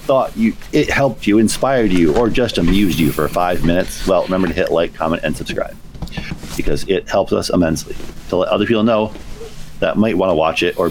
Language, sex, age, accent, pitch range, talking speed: English, male, 40-59, American, 90-125 Hz, 215 wpm